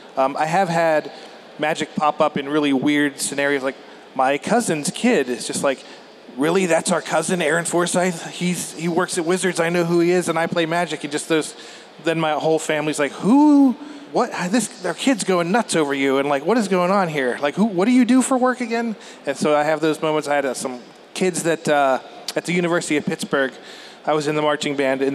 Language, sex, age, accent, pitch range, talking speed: English, male, 20-39, American, 145-180 Hz, 225 wpm